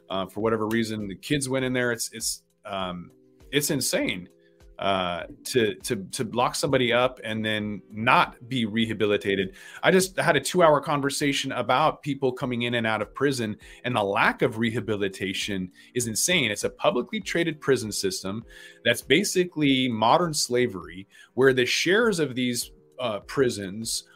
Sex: male